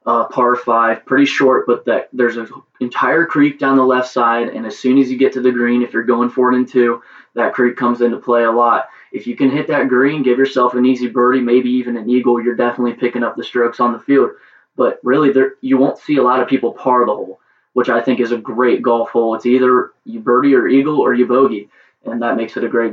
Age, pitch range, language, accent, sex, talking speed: 20-39, 115-130 Hz, English, American, male, 255 wpm